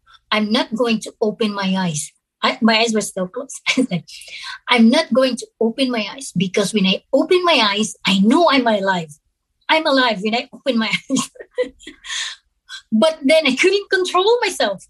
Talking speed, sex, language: 170 wpm, female, English